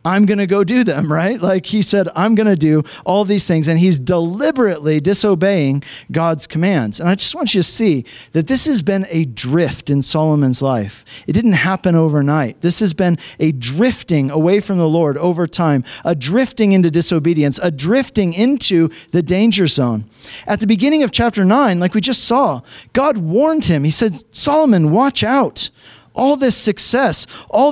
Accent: American